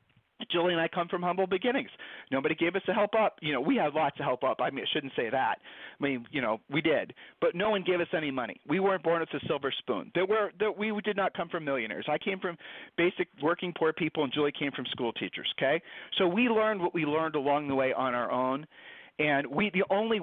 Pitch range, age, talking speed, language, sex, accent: 140-190 Hz, 40-59, 255 wpm, English, male, American